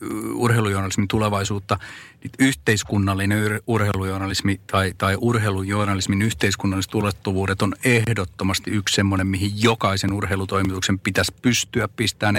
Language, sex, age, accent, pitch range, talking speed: Finnish, male, 40-59, native, 95-105 Hz, 95 wpm